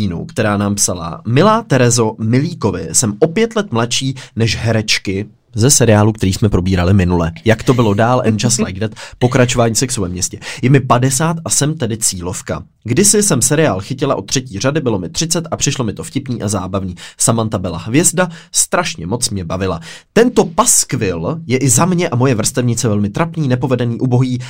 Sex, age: male, 20-39